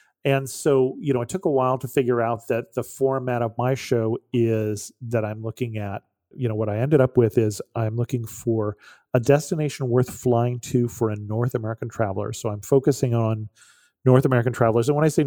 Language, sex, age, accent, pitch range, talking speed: English, male, 40-59, American, 115-130 Hz, 210 wpm